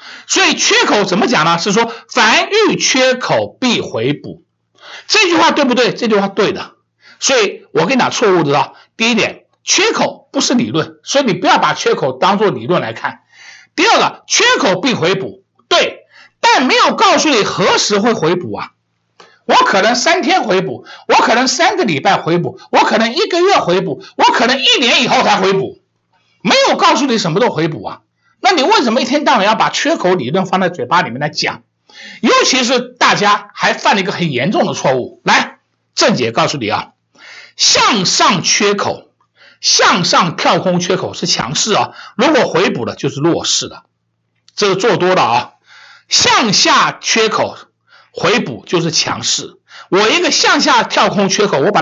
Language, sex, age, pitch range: Chinese, male, 60-79, 195-320 Hz